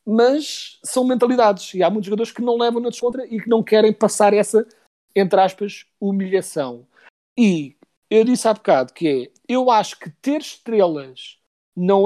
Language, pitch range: Portuguese, 170-220 Hz